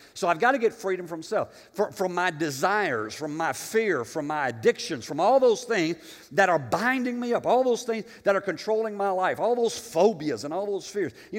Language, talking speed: English, 225 wpm